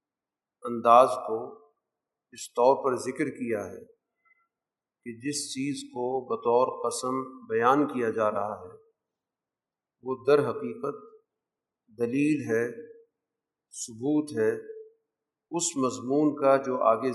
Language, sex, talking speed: Urdu, male, 110 wpm